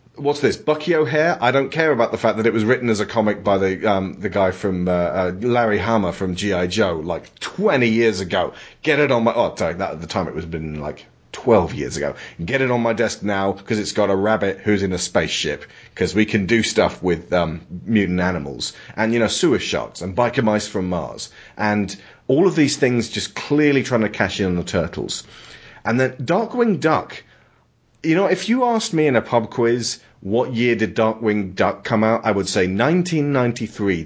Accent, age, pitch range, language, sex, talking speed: British, 30-49, 95-125 Hz, English, male, 220 wpm